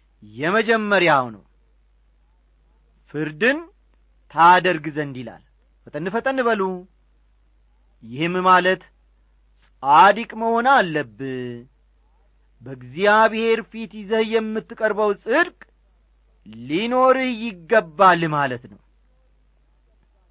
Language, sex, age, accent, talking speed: English, male, 40-59, Indian, 70 wpm